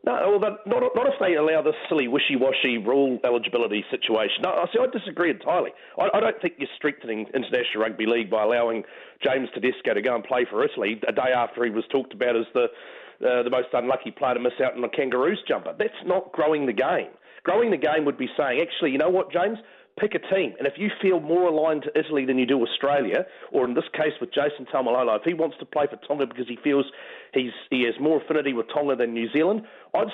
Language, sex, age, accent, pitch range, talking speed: English, male, 40-59, Australian, 125-185 Hz, 230 wpm